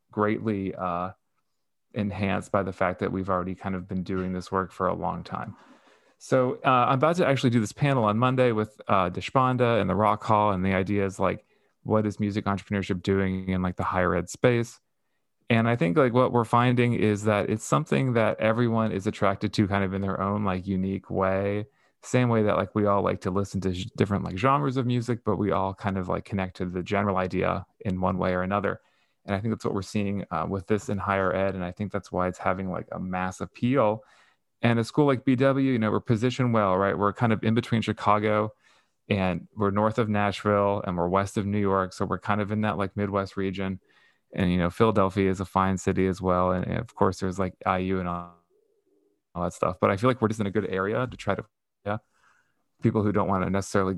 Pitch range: 95-110 Hz